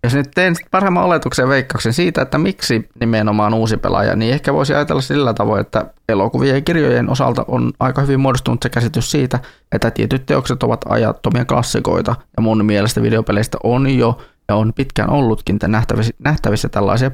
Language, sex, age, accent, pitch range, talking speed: Finnish, male, 20-39, native, 105-130 Hz, 170 wpm